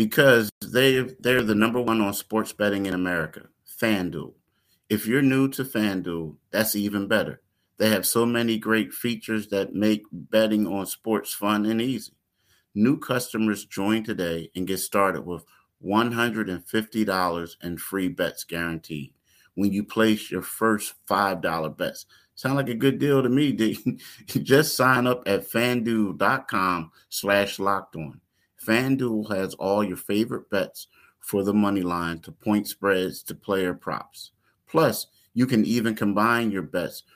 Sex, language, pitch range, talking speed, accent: male, English, 95-115 Hz, 150 wpm, American